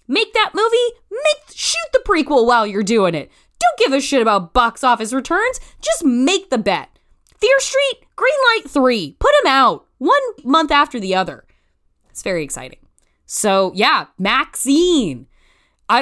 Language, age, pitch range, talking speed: English, 20-39, 195-305 Hz, 155 wpm